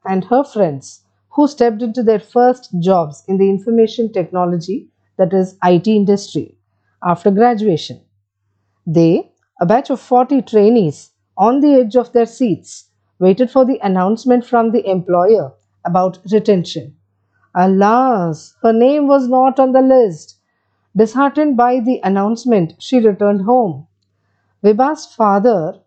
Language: English